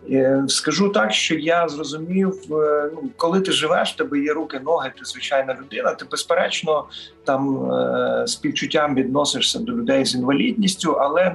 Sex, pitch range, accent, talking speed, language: male, 135-200 Hz, native, 130 wpm, Ukrainian